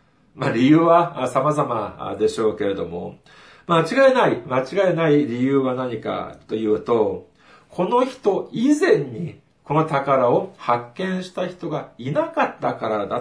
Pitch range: 120-190 Hz